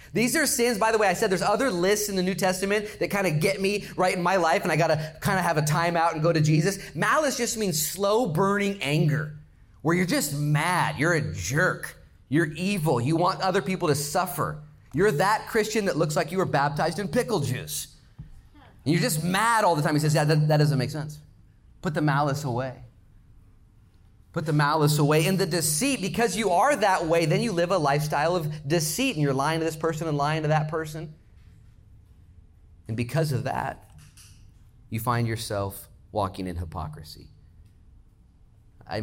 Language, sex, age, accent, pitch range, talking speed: English, male, 30-49, American, 105-170 Hz, 195 wpm